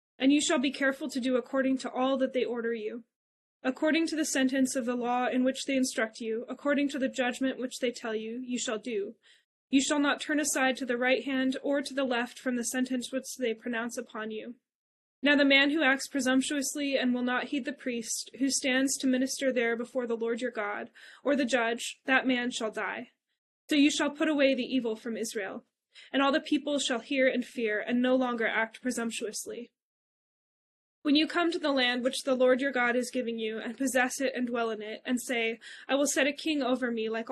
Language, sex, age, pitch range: English, female, 20-39, 240-275 Hz